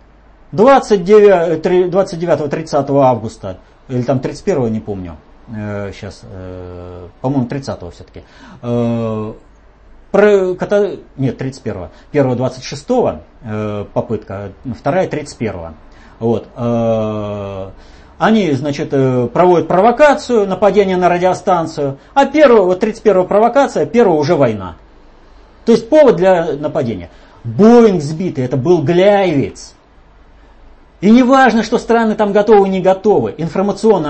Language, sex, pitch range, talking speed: Russian, male, 120-190 Hz, 90 wpm